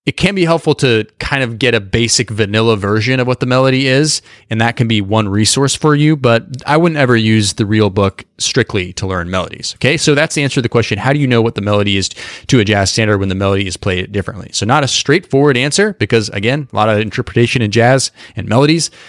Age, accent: 30-49, American